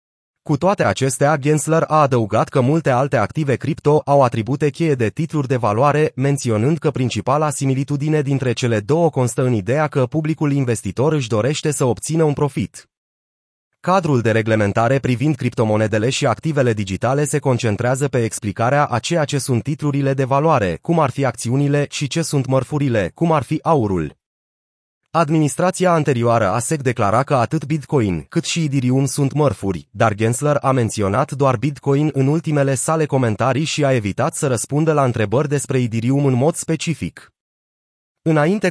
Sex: male